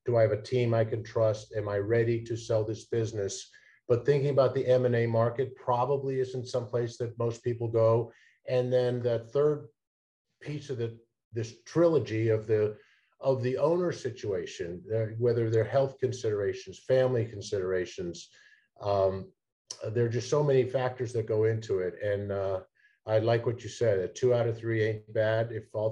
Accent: American